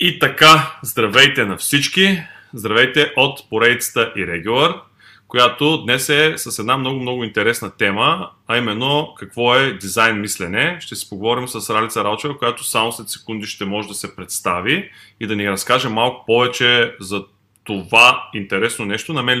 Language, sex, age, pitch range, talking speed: Bulgarian, male, 20-39, 100-130 Hz, 160 wpm